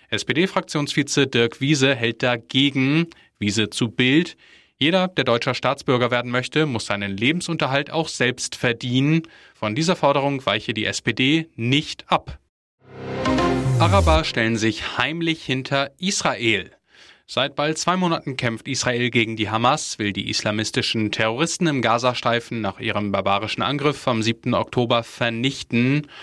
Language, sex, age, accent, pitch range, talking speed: German, male, 10-29, German, 115-145 Hz, 130 wpm